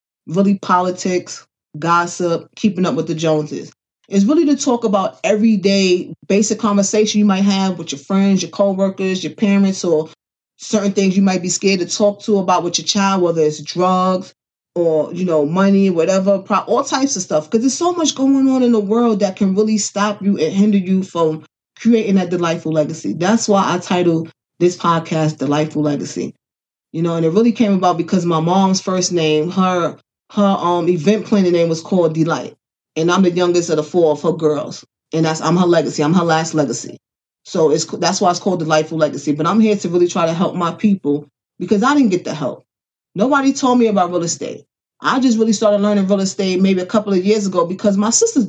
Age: 20-39